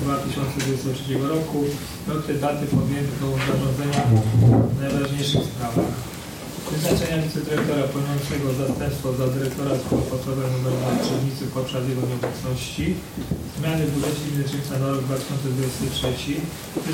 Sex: male